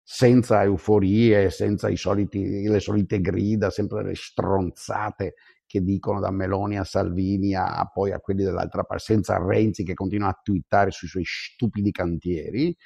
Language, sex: Italian, male